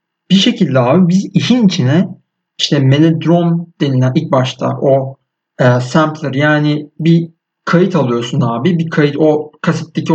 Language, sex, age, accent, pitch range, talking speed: Turkish, male, 60-79, native, 140-180 Hz, 135 wpm